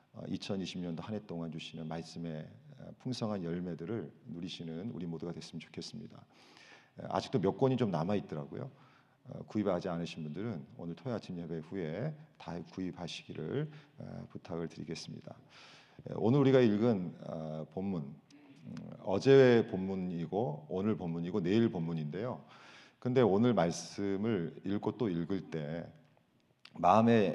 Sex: male